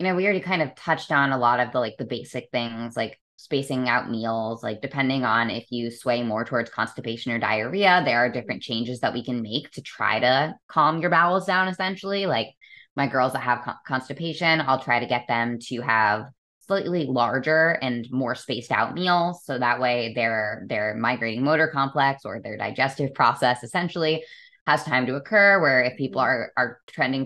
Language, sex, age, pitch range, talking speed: English, female, 10-29, 120-160 Hz, 200 wpm